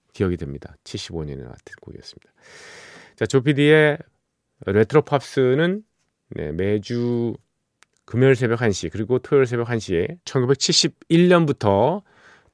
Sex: male